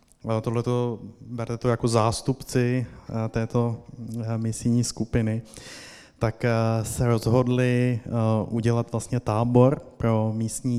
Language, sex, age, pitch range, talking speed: Czech, male, 20-39, 110-120 Hz, 90 wpm